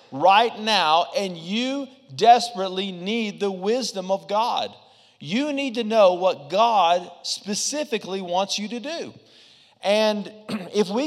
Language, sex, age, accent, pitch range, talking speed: English, male, 40-59, American, 195-245 Hz, 130 wpm